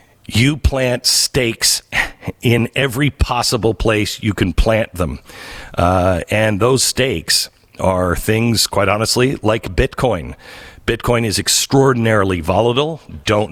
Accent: American